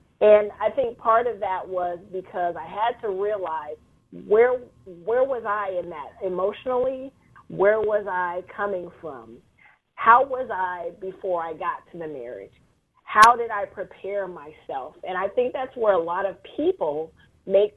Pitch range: 175-220 Hz